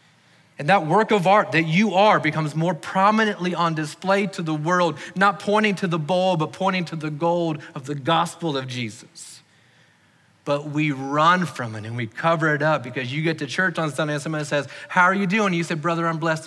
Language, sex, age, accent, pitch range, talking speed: English, male, 30-49, American, 135-170 Hz, 220 wpm